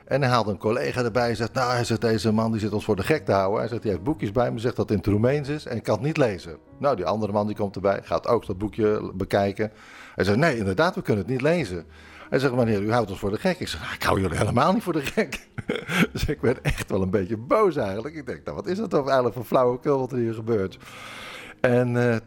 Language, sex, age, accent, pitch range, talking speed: Dutch, male, 50-69, Dutch, 100-130 Hz, 290 wpm